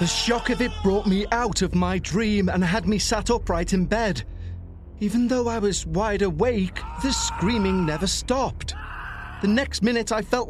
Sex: male